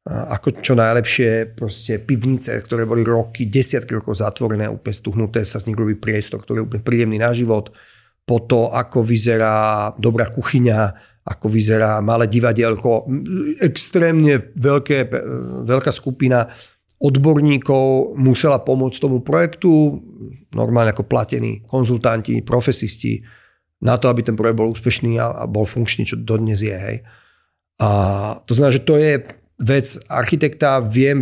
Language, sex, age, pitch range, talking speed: Slovak, male, 40-59, 115-135 Hz, 135 wpm